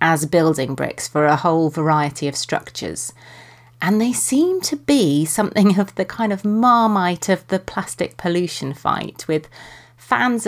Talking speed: 155 wpm